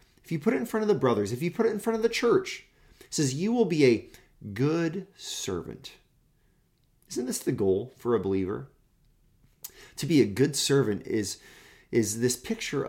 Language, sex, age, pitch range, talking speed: English, male, 30-49, 125-180 Hz, 195 wpm